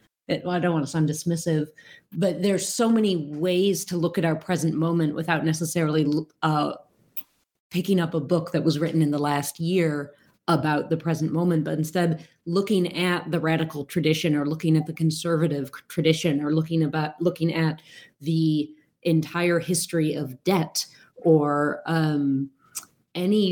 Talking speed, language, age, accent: 160 wpm, English, 30-49, American